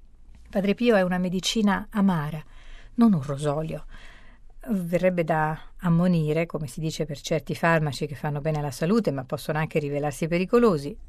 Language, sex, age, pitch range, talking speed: Italian, female, 50-69, 155-185 Hz, 150 wpm